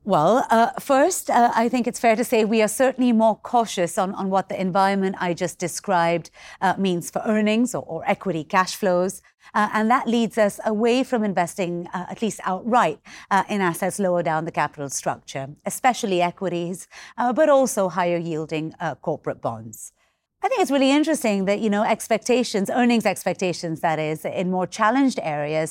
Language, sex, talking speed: English, female, 185 wpm